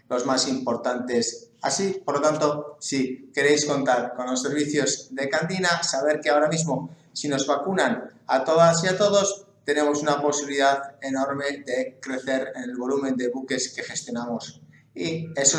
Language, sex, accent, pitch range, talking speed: English, male, Spanish, 125-150 Hz, 160 wpm